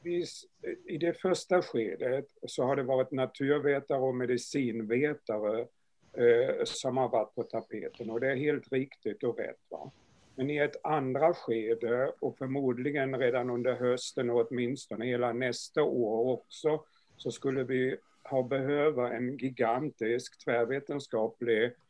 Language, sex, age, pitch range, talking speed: Swedish, male, 60-79, 120-145 Hz, 130 wpm